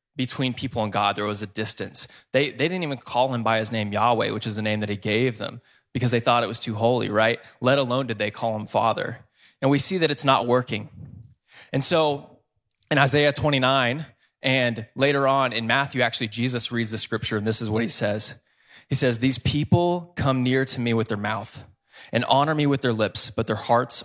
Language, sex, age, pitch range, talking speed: English, male, 20-39, 110-135 Hz, 220 wpm